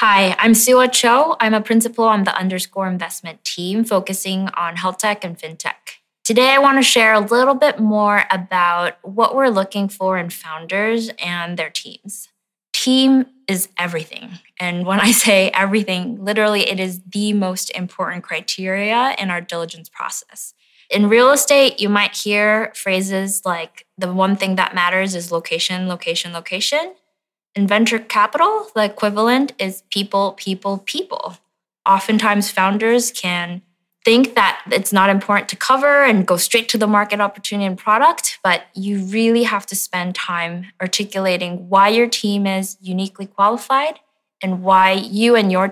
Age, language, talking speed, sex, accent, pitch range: 20-39, English, 160 wpm, female, American, 185-225 Hz